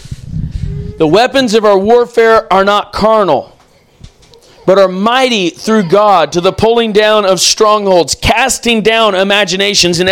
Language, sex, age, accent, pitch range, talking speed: English, male, 40-59, American, 185-230 Hz, 135 wpm